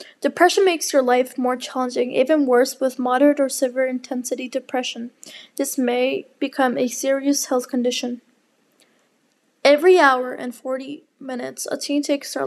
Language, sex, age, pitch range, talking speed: English, female, 20-39, 255-290 Hz, 145 wpm